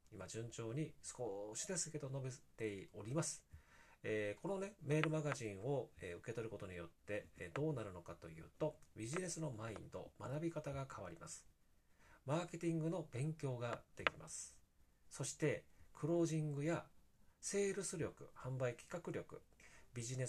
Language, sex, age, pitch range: Japanese, male, 40-59, 115-160 Hz